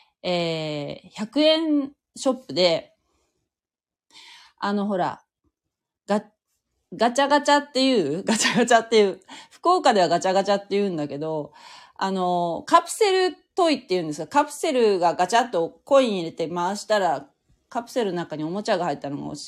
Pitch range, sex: 175-285 Hz, female